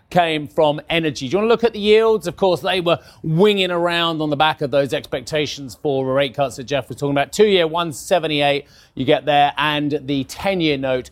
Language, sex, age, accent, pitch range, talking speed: English, male, 30-49, British, 140-185 Hz, 215 wpm